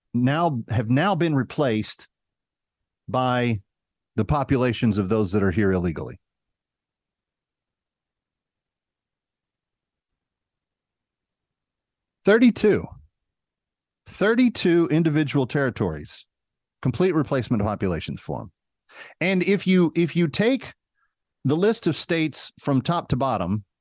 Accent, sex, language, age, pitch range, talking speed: American, male, English, 40-59, 110-165 Hz, 90 wpm